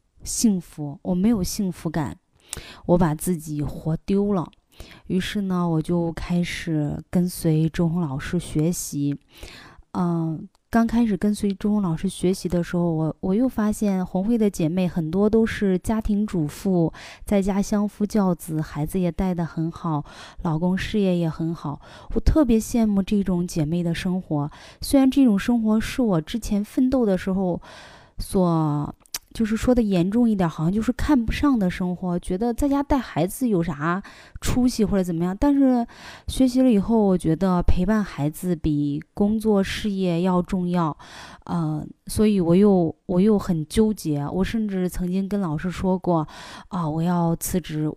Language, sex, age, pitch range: Chinese, female, 20-39, 160-205 Hz